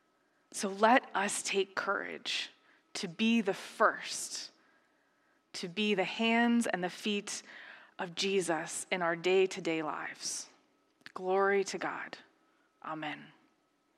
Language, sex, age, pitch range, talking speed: English, female, 20-39, 195-235 Hz, 110 wpm